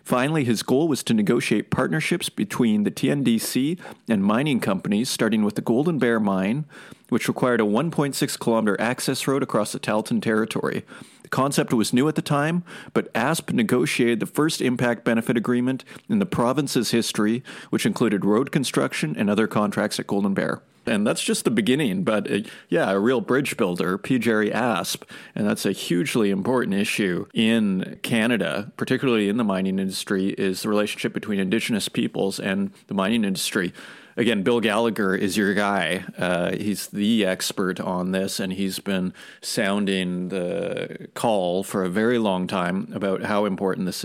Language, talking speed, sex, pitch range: English, 170 wpm, male, 100-135 Hz